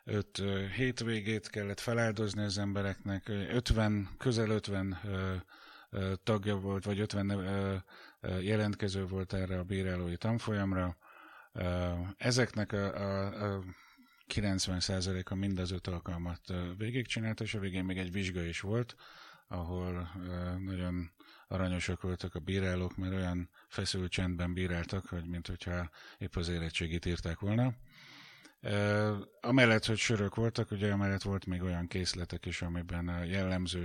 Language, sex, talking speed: Hungarian, male, 125 wpm